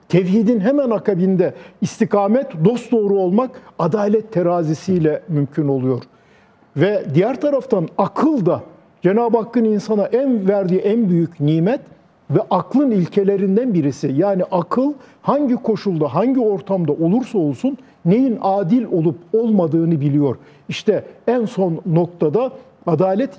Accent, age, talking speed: native, 50-69, 120 wpm